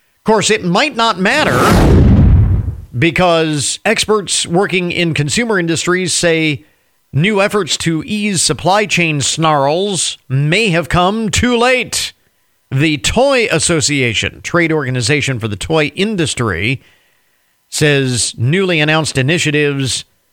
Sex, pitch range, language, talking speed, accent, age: male, 130-170 Hz, English, 110 wpm, American, 50-69